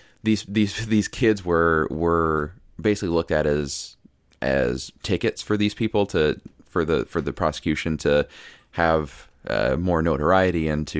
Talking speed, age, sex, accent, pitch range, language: 155 wpm, 20-39, male, American, 75-95 Hz, English